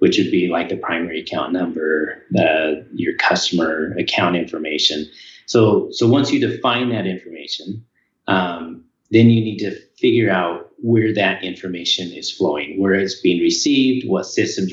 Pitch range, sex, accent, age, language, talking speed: 95-120 Hz, male, American, 40-59, English, 150 wpm